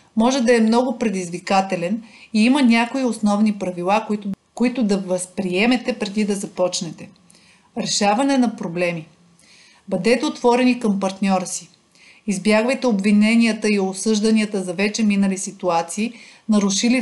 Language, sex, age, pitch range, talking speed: Bulgarian, female, 40-59, 195-230 Hz, 120 wpm